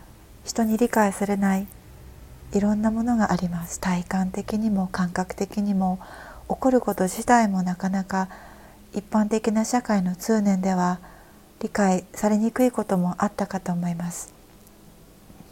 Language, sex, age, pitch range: Japanese, female, 40-59, 195-240 Hz